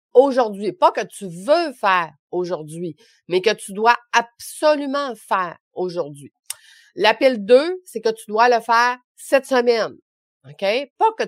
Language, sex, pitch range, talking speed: French, female, 185-255 Hz, 145 wpm